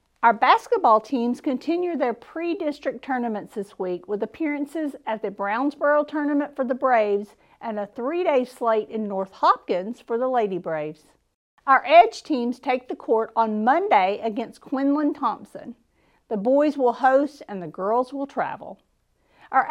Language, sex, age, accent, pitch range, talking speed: English, female, 50-69, American, 220-295 Hz, 150 wpm